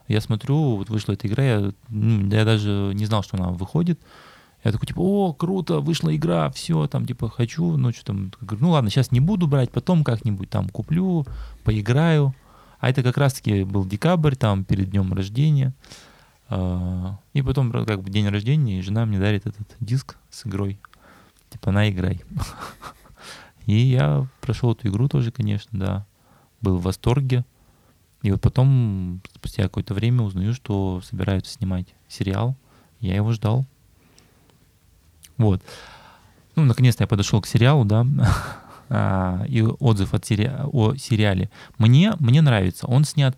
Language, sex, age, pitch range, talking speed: Russian, male, 20-39, 100-135 Hz, 150 wpm